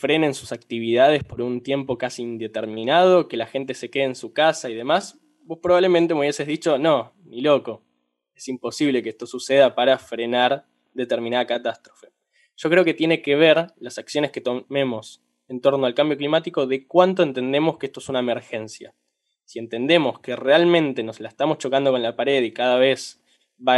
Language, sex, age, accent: Spanish, male, 10-29, Argentinian